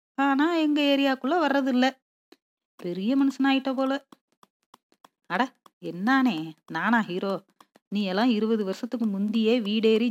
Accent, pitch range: native, 215-275 Hz